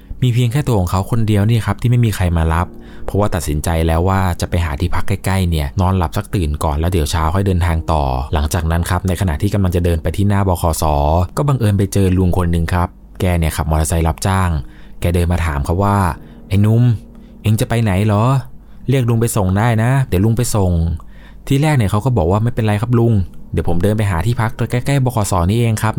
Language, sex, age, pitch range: Thai, male, 20-39, 85-115 Hz